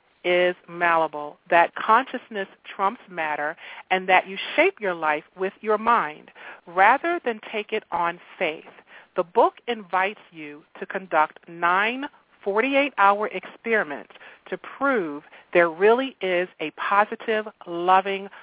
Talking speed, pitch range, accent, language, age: 125 wpm, 170-230 Hz, American, English, 40-59